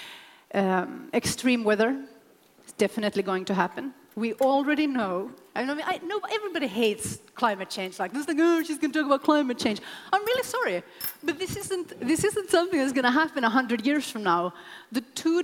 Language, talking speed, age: English, 185 wpm, 30-49